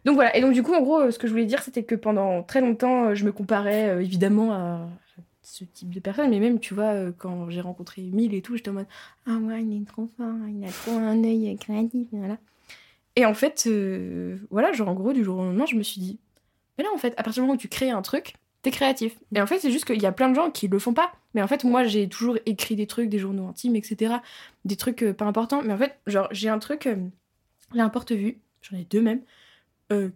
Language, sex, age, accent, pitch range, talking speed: French, female, 20-39, French, 195-230 Hz, 270 wpm